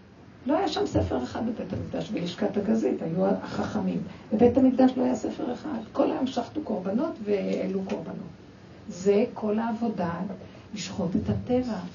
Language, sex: Hebrew, female